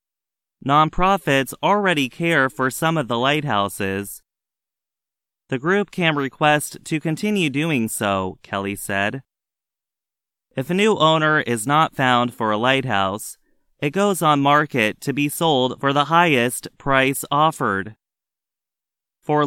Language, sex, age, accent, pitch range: Chinese, male, 30-49, American, 115-155 Hz